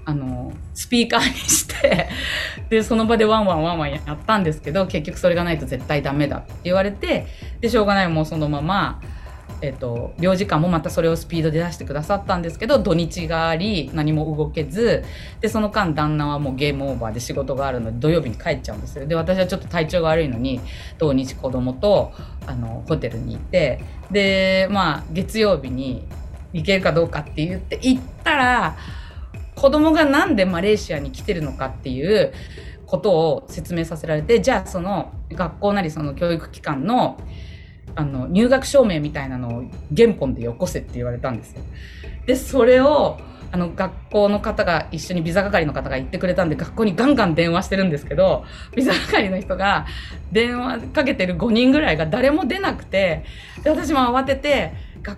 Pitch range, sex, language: 145-215 Hz, female, Japanese